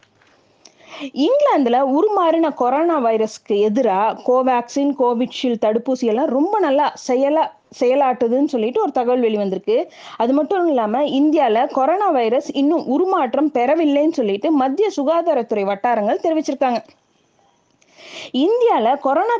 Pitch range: 245-320 Hz